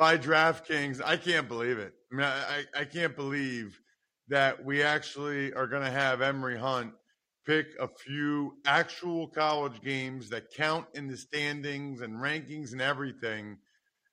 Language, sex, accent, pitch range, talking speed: English, male, American, 135-165 Hz, 155 wpm